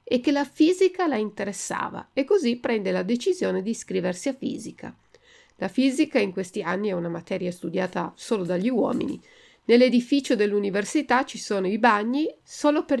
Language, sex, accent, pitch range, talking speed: Italian, female, native, 190-260 Hz, 160 wpm